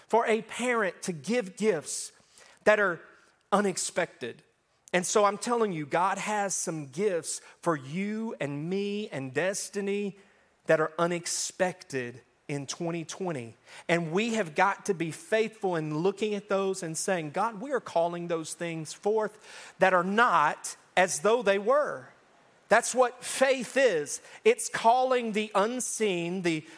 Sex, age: male, 40-59